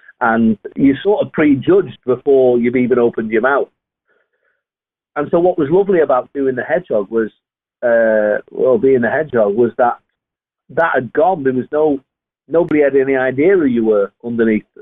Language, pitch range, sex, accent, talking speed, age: English, 130-195 Hz, male, British, 170 wpm, 40-59